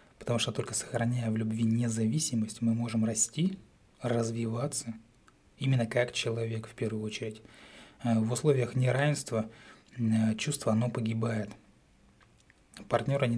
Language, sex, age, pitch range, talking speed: Russian, male, 20-39, 115-130 Hz, 110 wpm